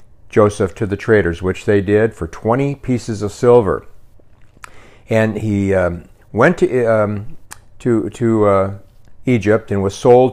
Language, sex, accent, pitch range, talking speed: English, male, American, 100-120 Hz, 145 wpm